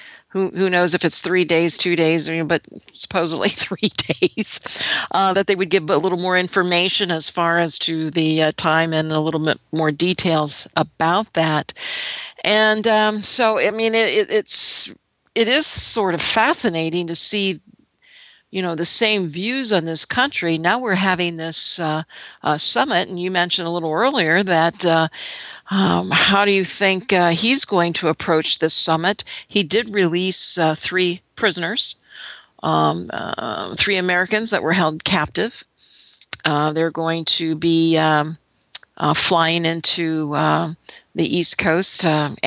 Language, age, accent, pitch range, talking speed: English, 50-69, American, 160-200 Hz, 165 wpm